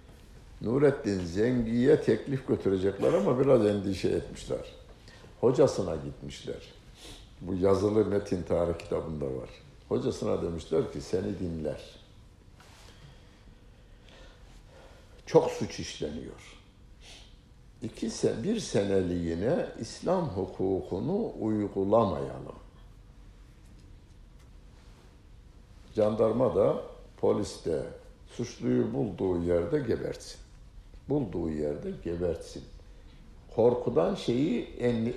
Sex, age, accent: male, 60-79, native